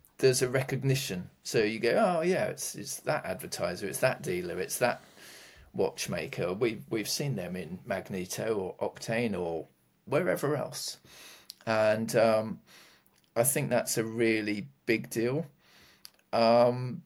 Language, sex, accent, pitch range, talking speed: English, male, British, 100-135 Hz, 135 wpm